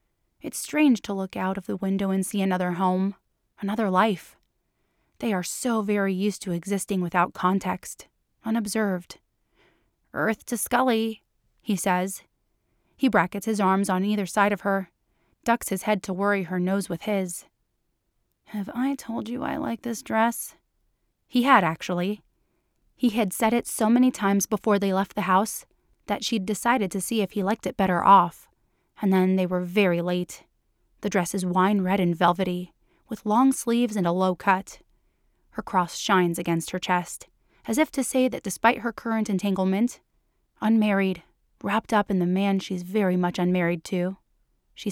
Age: 20-39